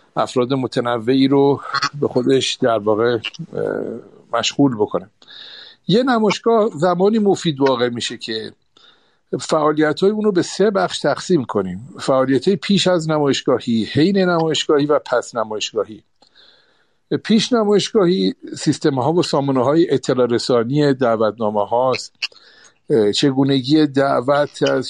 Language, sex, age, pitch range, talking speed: Persian, male, 60-79, 120-155 Hz, 105 wpm